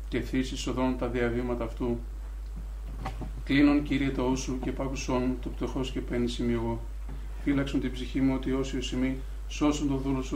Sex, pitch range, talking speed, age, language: male, 120-135 Hz, 170 wpm, 50-69, Greek